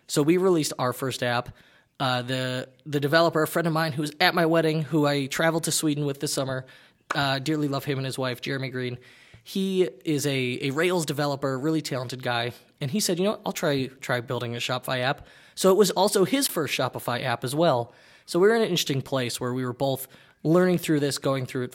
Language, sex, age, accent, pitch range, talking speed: English, male, 20-39, American, 125-160 Hz, 235 wpm